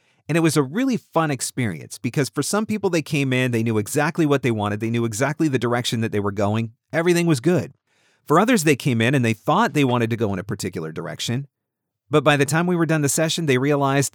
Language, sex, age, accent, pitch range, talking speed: English, male, 40-59, American, 110-140 Hz, 250 wpm